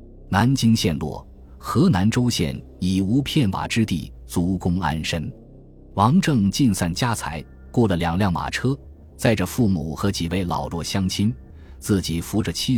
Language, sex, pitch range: Chinese, male, 80-105 Hz